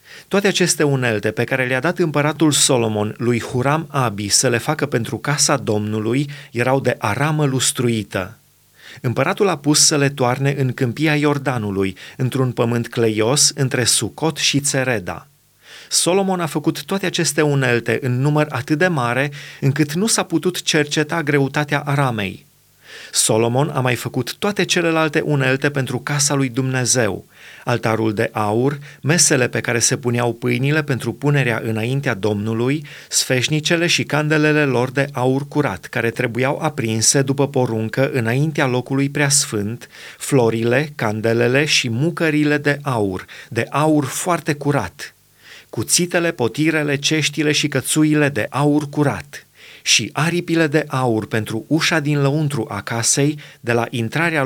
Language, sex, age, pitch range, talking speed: Romanian, male, 30-49, 120-150 Hz, 140 wpm